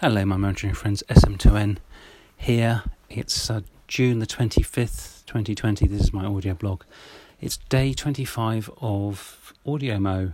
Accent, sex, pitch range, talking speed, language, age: British, male, 95-115 Hz, 130 wpm, English, 40-59